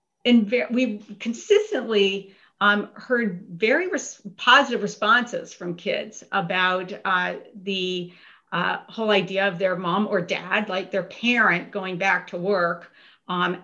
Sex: female